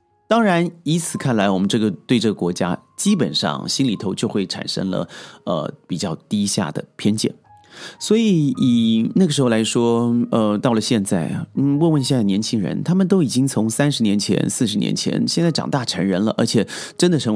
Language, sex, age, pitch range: Chinese, male, 30-49, 120-190 Hz